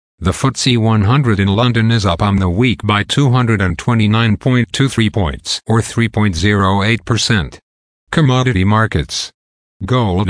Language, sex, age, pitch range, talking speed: English, male, 50-69, 100-120 Hz, 105 wpm